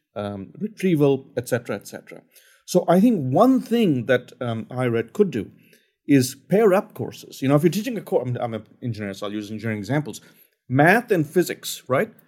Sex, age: male, 50-69